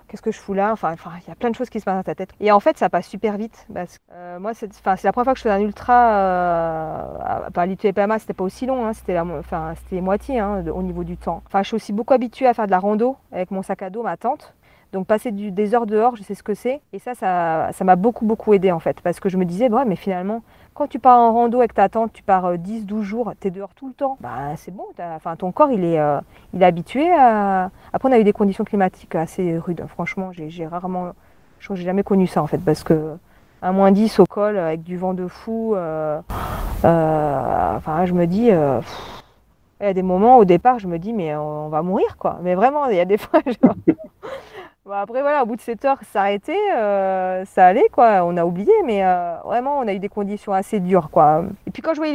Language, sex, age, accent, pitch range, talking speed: French, female, 40-59, French, 175-235 Hz, 270 wpm